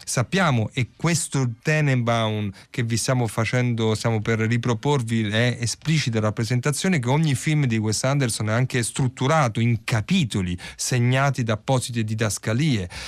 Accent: native